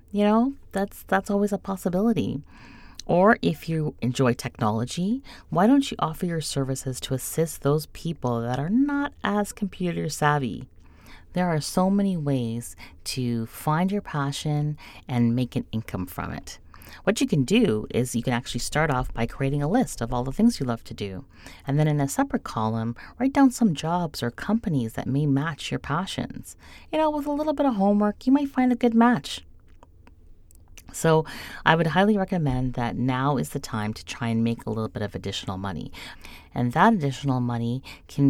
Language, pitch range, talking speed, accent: English, 115-185 Hz, 190 wpm, American